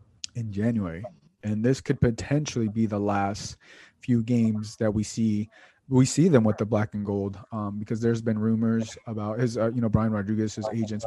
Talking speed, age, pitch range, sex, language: 195 wpm, 20-39, 110-125 Hz, male, English